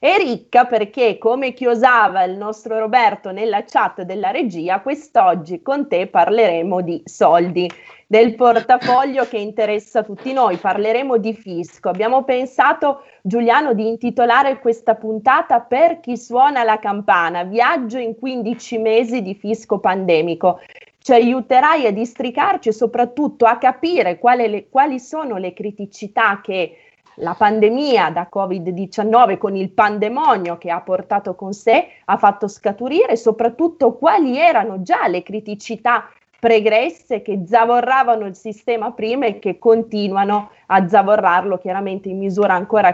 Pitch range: 200-255 Hz